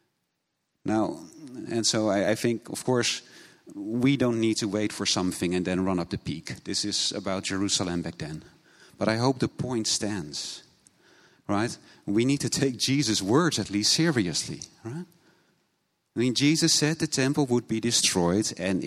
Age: 40-59